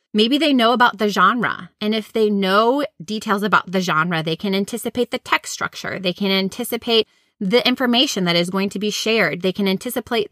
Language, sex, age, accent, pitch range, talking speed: English, female, 20-39, American, 185-235 Hz, 200 wpm